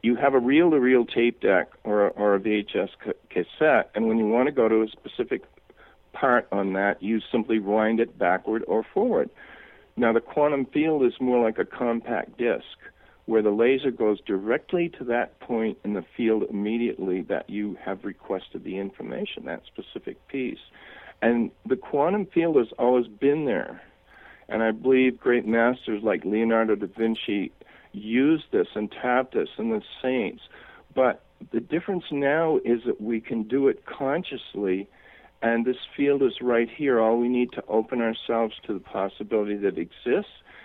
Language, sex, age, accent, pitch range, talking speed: English, male, 50-69, American, 110-130 Hz, 165 wpm